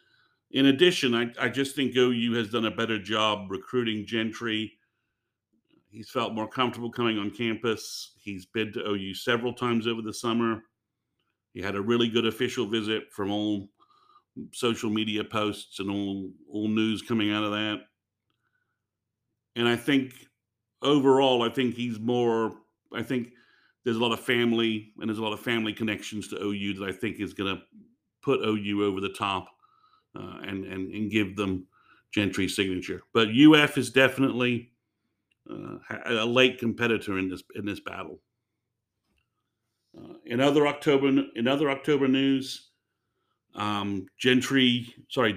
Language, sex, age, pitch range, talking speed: English, male, 50-69, 105-125 Hz, 155 wpm